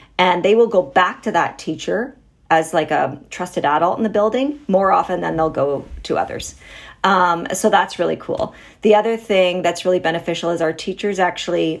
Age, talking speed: 40-59, 195 wpm